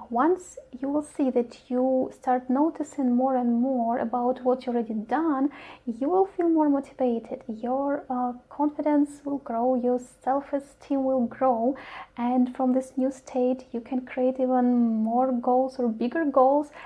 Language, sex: English, female